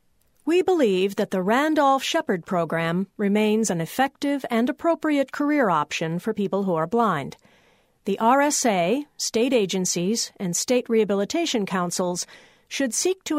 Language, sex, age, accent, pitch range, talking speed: English, female, 50-69, American, 180-265 Hz, 130 wpm